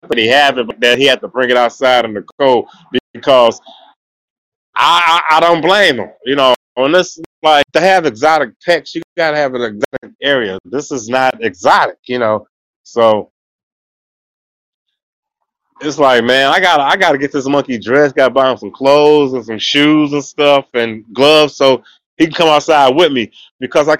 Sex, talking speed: male, 195 wpm